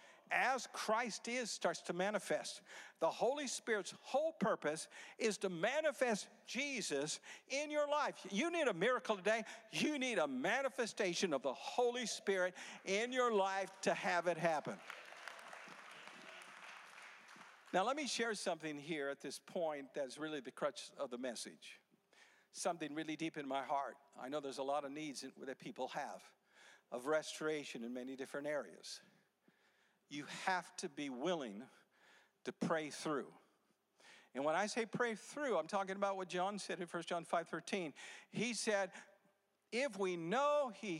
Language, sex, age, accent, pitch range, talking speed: English, male, 50-69, American, 175-250 Hz, 155 wpm